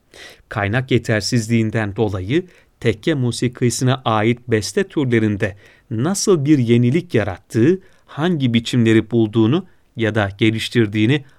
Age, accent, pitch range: 40-59, native, 110-145 Hz